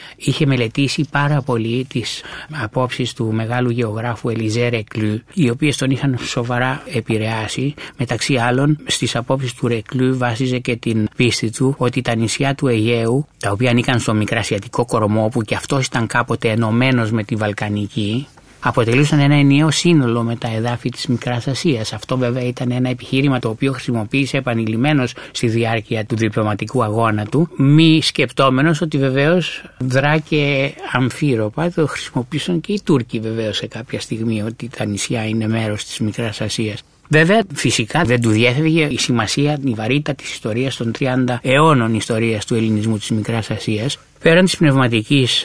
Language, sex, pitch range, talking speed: Greek, male, 115-140 Hz, 155 wpm